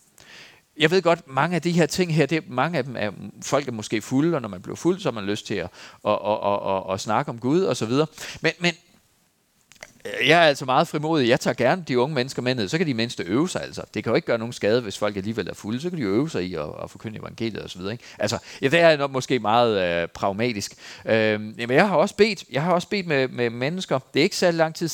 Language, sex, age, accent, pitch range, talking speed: Danish, male, 40-59, native, 115-160 Hz, 265 wpm